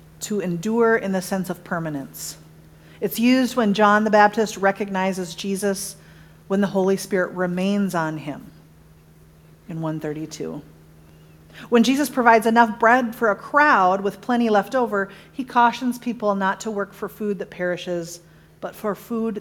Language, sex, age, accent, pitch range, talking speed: English, female, 40-59, American, 160-220 Hz, 150 wpm